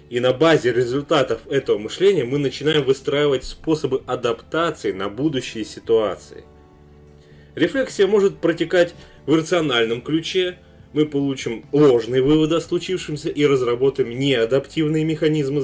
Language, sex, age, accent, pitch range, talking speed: Russian, male, 20-39, native, 130-185 Hz, 115 wpm